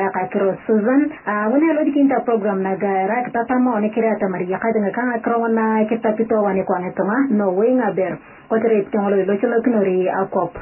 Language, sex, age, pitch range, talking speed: English, male, 20-39, 200-235 Hz, 160 wpm